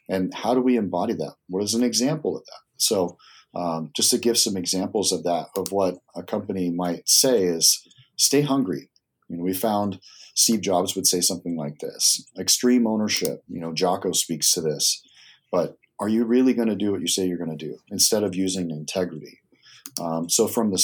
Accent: American